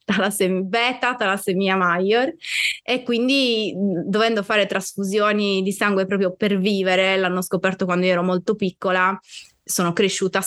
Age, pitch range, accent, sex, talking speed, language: 20-39, 175-205 Hz, native, female, 125 wpm, Italian